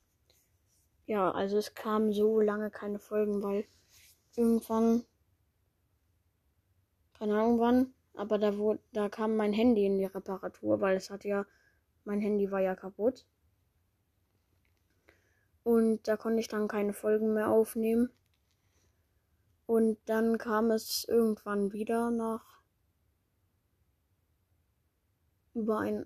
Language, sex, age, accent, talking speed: German, female, 10-29, German, 115 wpm